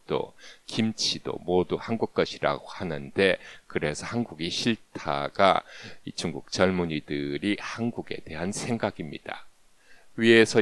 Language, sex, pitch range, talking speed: English, male, 80-105 Hz, 85 wpm